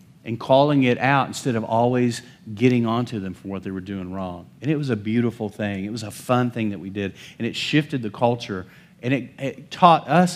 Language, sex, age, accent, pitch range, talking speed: English, male, 40-59, American, 110-150 Hz, 230 wpm